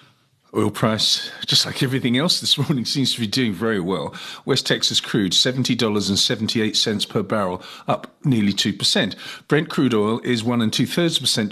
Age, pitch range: 50-69, 105-140 Hz